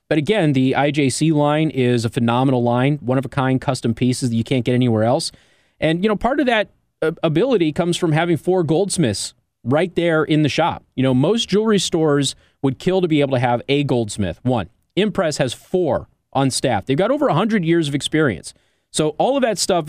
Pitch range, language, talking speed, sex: 125-175 Hz, English, 200 wpm, male